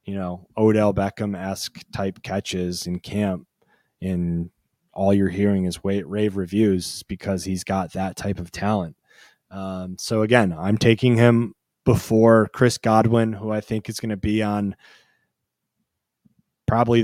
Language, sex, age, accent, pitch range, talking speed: English, male, 20-39, American, 95-110 Hz, 150 wpm